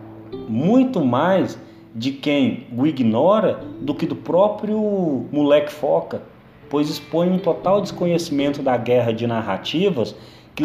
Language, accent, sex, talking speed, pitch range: Portuguese, Brazilian, male, 125 wpm, 120-170 Hz